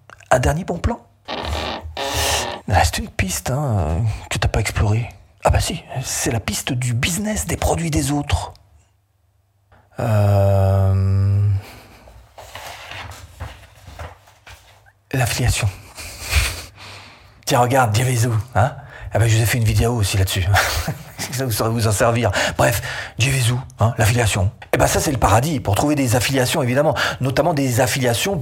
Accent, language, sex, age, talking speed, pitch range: French, French, male, 40-59, 140 wpm, 100-145 Hz